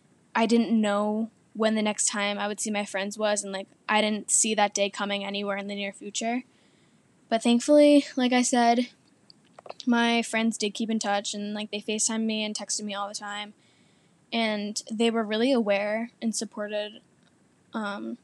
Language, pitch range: English, 205-235 Hz